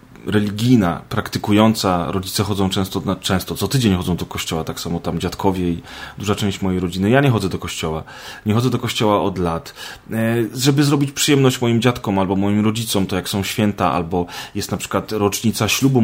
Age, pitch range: 30-49, 95-115 Hz